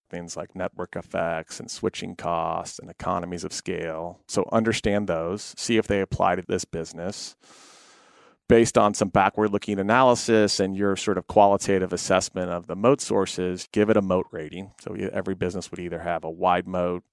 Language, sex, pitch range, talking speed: English, male, 90-105 Hz, 175 wpm